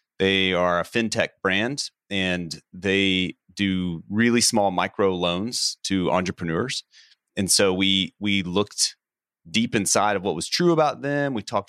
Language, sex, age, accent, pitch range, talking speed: English, male, 30-49, American, 85-100 Hz, 150 wpm